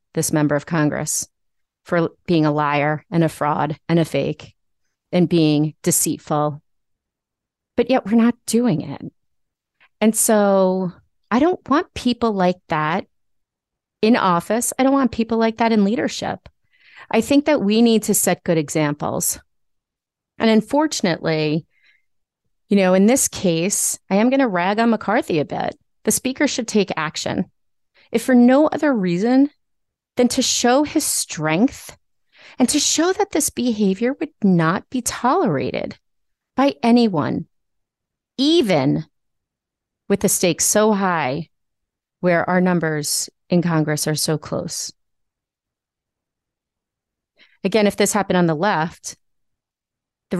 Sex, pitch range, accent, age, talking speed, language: female, 165-240 Hz, American, 30-49, 135 wpm, English